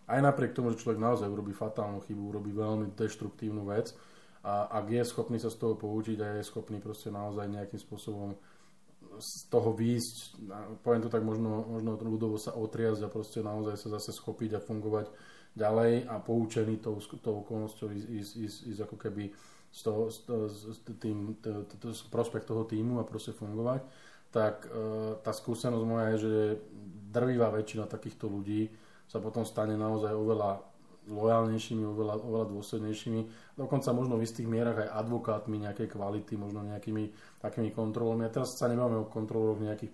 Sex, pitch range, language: male, 105-115 Hz, Slovak